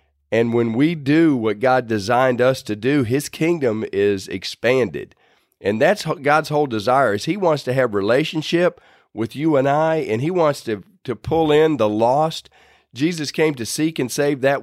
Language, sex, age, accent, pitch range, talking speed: English, male, 40-59, American, 105-150 Hz, 185 wpm